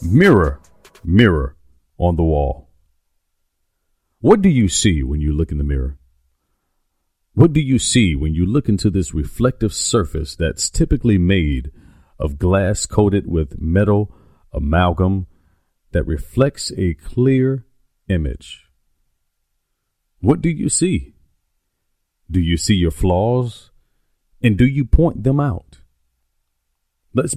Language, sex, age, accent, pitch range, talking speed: English, male, 40-59, American, 75-110 Hz, 125 wpm